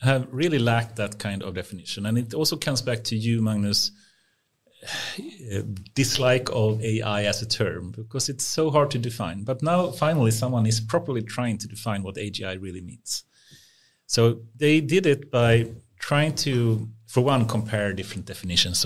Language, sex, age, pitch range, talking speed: English, male, 30-49, 100-125 Hz, 170 wpm